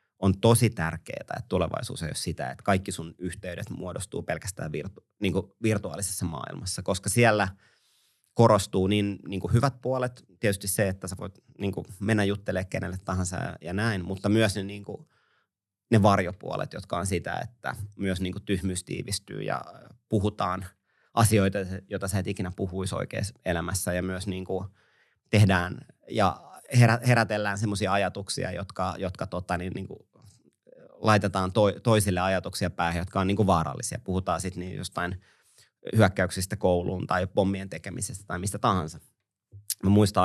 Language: Finnish